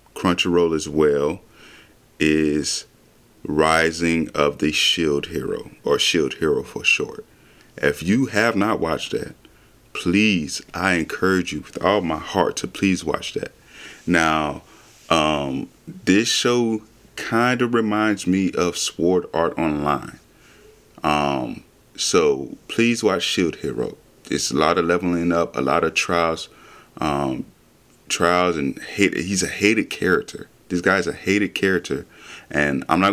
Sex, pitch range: male, 80-105 Hz